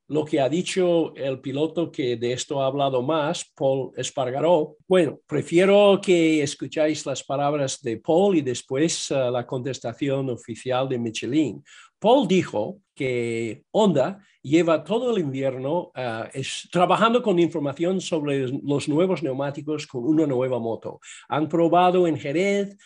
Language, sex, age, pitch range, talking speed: Spanish, male, 50-69, 135-180 Hz, 145 wpm